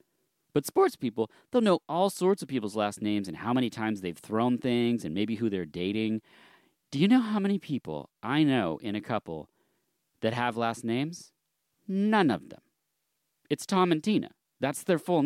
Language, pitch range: English, 110-175 Hz